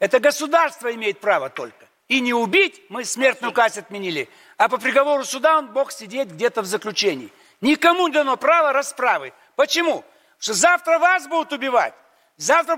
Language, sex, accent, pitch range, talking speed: Russian, male, native, 165-280 Hz, 165 wpm